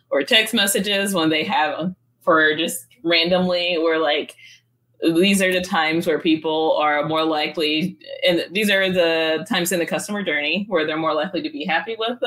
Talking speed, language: 180 wpm, English